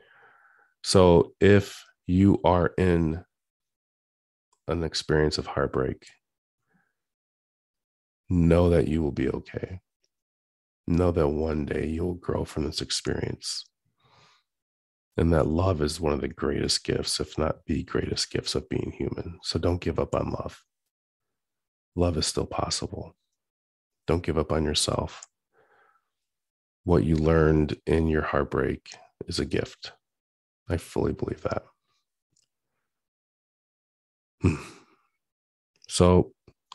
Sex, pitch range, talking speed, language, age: male, 75-90 Hz, 115 wpm, English, 40-59